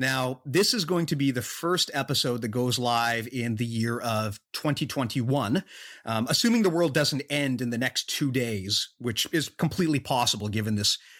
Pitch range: 120-155 Hz